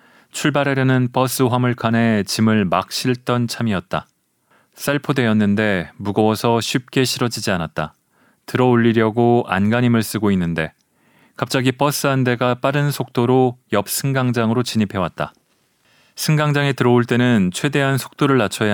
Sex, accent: male, native